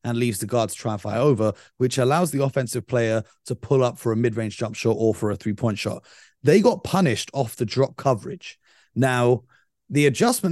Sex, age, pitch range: male, 30-49, 115-150 Hz